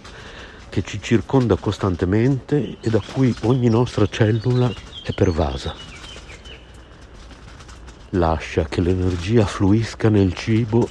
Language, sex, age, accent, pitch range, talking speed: Italian, male, 60-79, native, 80-105 Hz, 100 wpm